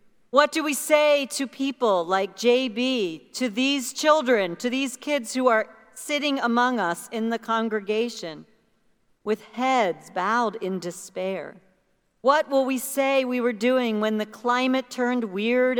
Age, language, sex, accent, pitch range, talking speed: 50-69, English, female, American, 215-255 Hz, 150 wpm